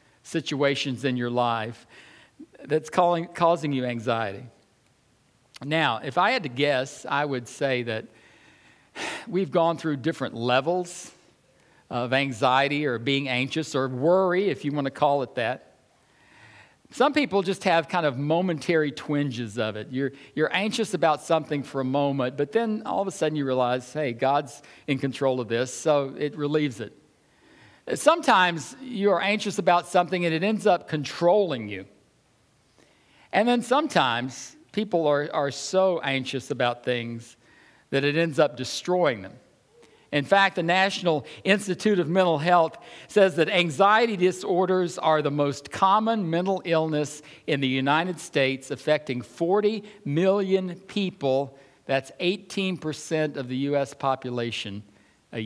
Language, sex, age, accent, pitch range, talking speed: English, male, 60-79, American, 130-180 Hz, 145 wpm